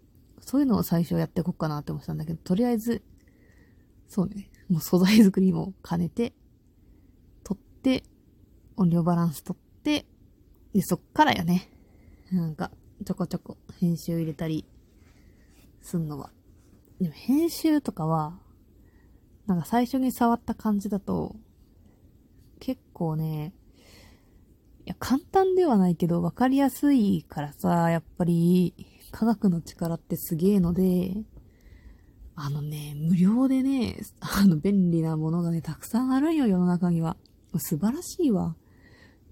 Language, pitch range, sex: Japanese, 155-205 Hz, female